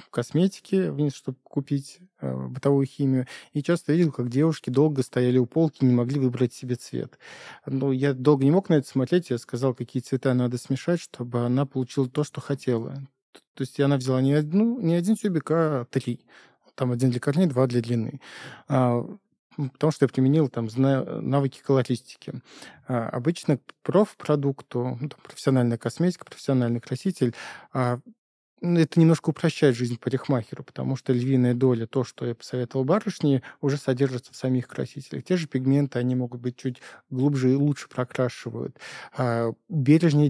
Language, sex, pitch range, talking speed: Russian, male, 125-155 Hz, 155 wpm